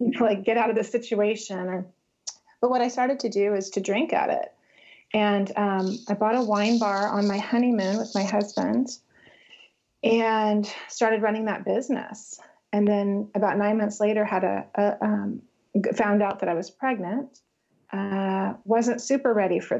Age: 30-49